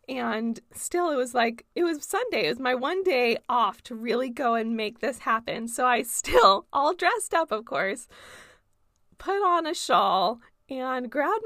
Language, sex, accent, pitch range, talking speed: English, female, American, 230-325 Hz, 185 wpm